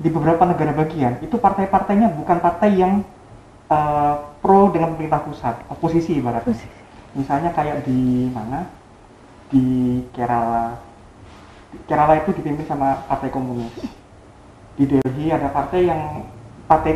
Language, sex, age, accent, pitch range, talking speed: Indonesian, male, 30-49, native, 130-175 Hz, 120 wpm